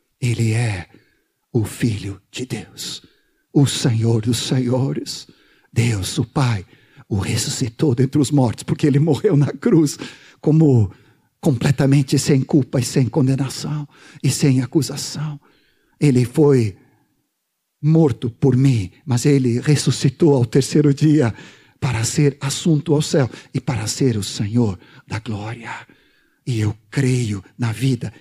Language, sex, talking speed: Portuguese, male, 130 wpm